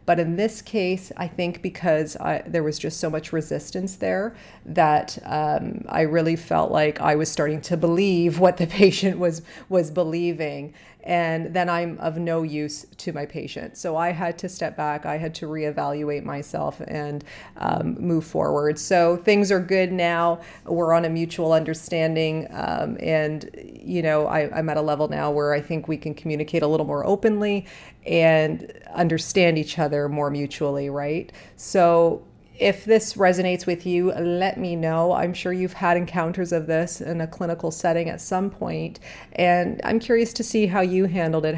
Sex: female